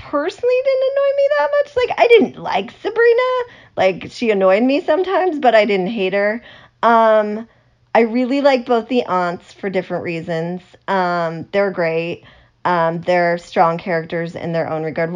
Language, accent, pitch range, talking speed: English, American, 165-220 Hz, 165 wpm